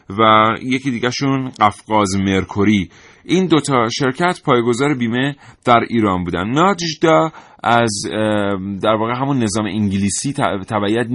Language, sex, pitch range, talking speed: Persian, male, 105-135 Hz, 120 wpm